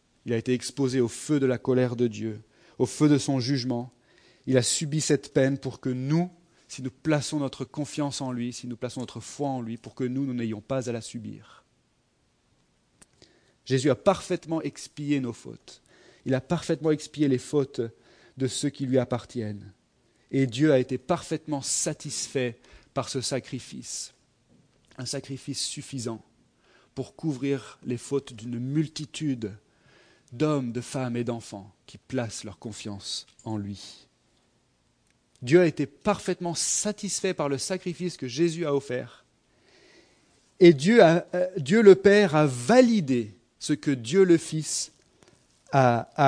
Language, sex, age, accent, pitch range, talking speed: French, male, 40-59, French, 125-155 Hz, 155 wpm